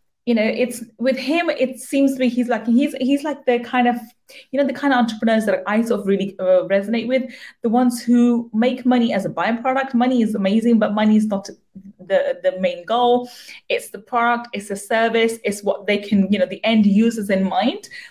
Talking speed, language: 220 wpm, English